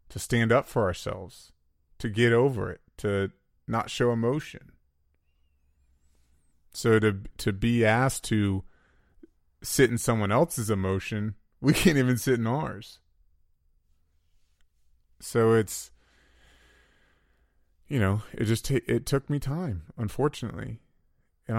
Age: 20-39